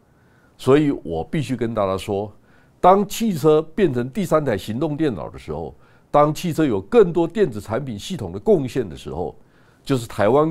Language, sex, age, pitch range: Chinese, male, 50-69, 100-150 Hz